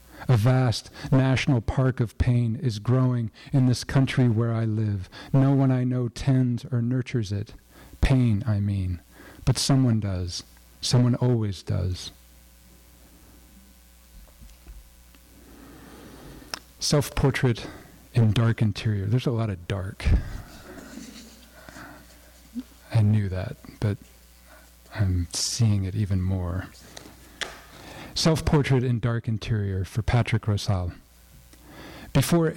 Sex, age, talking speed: male, 50-69, 105 wpm